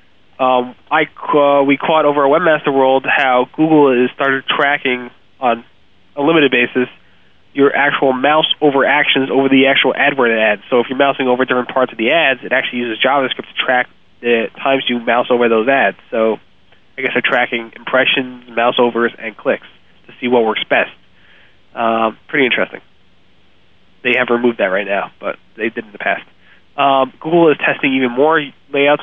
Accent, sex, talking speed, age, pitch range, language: American, male, 185 wpm, 30-49, 120-140 Hz, English